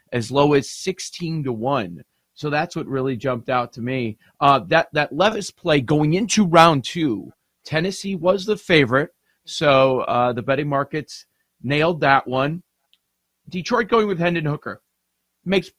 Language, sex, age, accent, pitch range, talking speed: English, male, 40-59, American, 125-165 Hz, 155 wpm